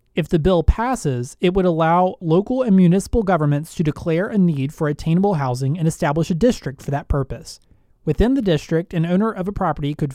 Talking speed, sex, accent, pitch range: 200 wpm, male, American, 145-190 Hz